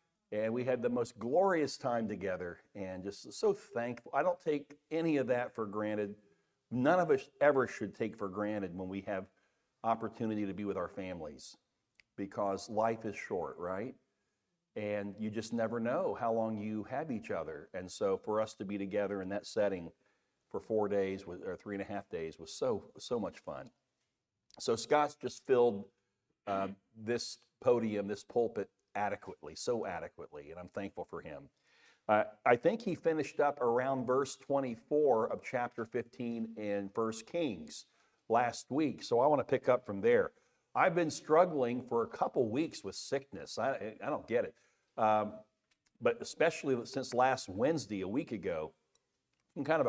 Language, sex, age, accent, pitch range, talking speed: English, male, 50-69, American, 105-135 Hz, 175 wpm